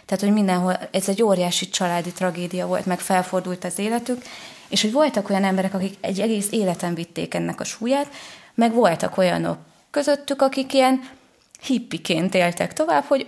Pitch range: 180-225 Hz